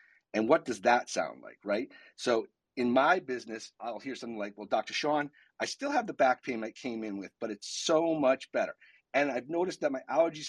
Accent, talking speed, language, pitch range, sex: American, 225 wpm, English, 125-180 Hz, male